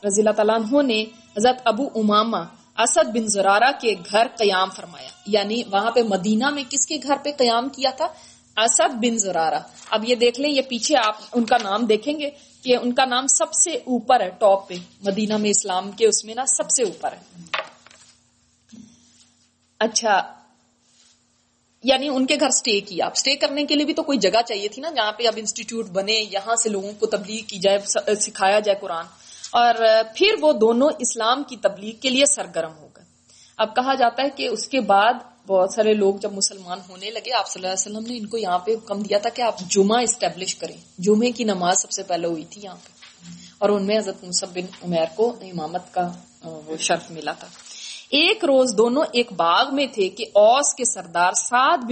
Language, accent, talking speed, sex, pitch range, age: English, Indian, 145 wpm, female, 195-250 Hz, 30-49